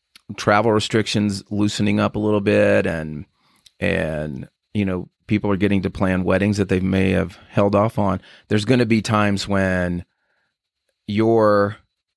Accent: American